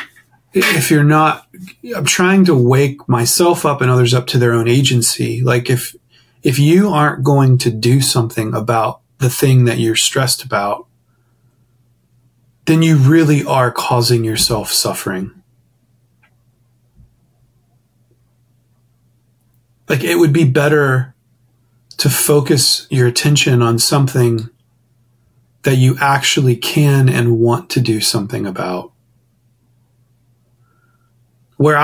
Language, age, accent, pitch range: English, 30-49, American, 120-140 Hz